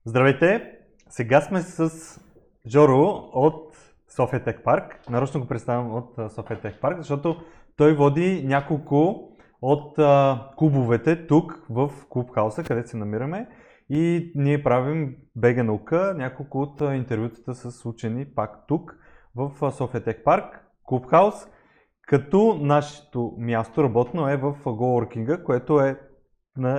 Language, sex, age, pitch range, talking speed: Bulgarian, male, 20-39, 115-150 Hz, 115 wpm